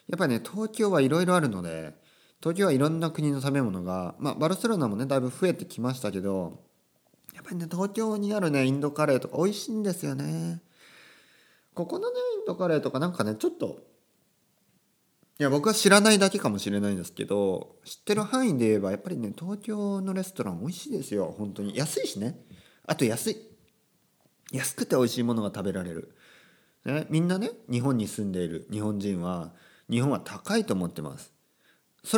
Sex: male